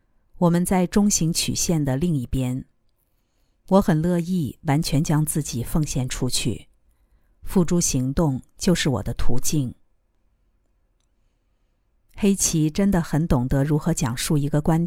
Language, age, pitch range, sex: Chinese, 50-69, 125-170 Hz, female